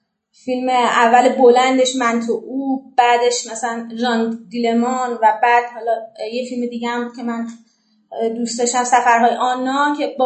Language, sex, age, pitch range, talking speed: Persian, female, 30-49, 240-285 Hz, 145 wpm